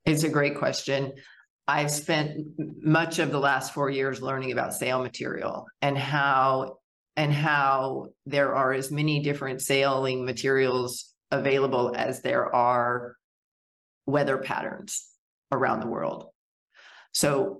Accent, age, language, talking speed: American, 40-59, English, 125 wpm